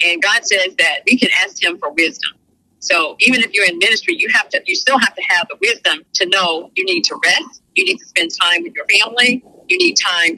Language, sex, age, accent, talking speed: English, female, 40-59, American, 245 wpm